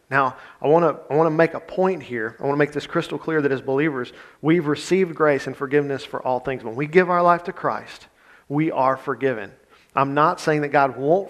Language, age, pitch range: English, 50-69, 120-145 Hz